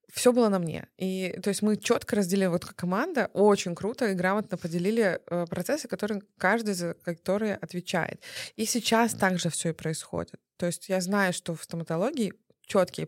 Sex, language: female, Russian